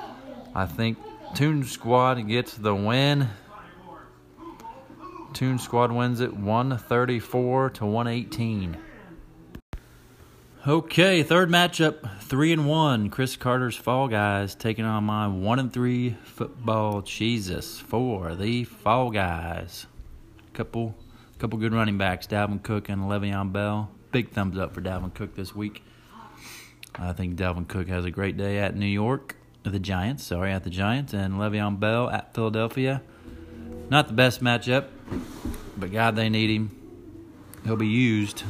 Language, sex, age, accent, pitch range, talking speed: English, male, 30-49, American, 95-120 Hz, 135 wpm